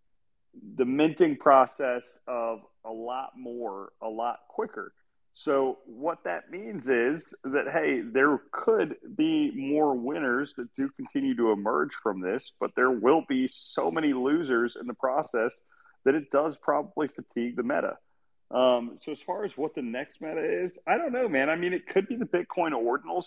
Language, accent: English, American